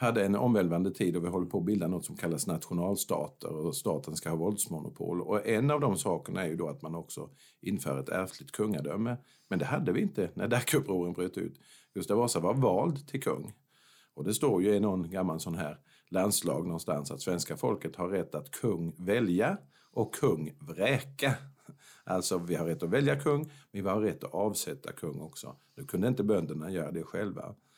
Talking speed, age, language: 200 wpm, 50-69, Swedish